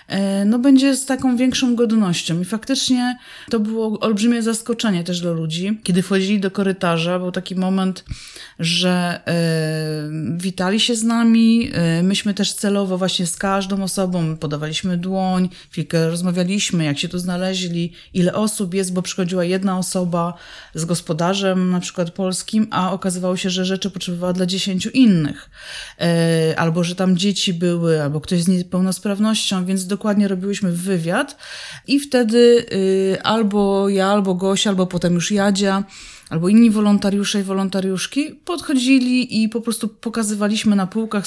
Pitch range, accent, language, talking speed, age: 180-220 Hz, native, Polish, 145 wpm, 30-49